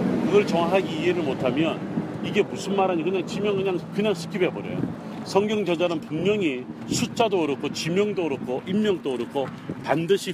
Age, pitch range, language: 40-59, 155-195 Hz, Korean